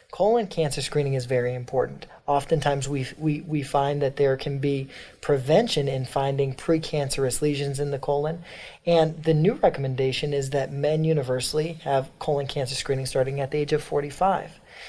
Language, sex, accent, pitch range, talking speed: English, male, American, 140-180 Hz, 160 wpm